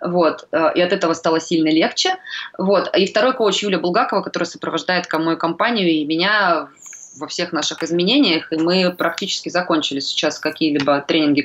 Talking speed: 145 wpm